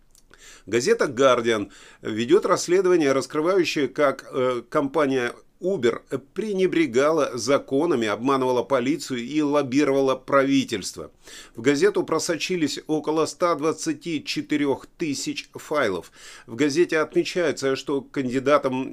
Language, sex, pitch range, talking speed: Russian, male, 125-175 Hz, 90 wpm